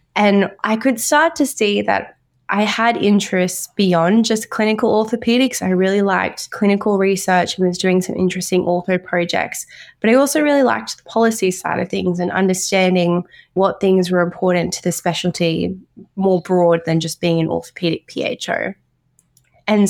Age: 20-39